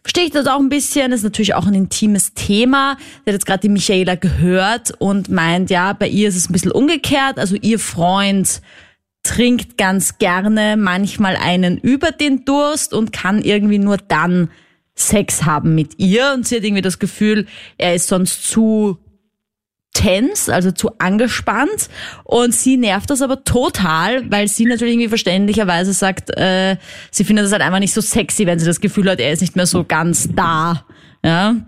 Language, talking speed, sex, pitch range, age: German, 185 wpm, female, 180-230 Hz, 20-39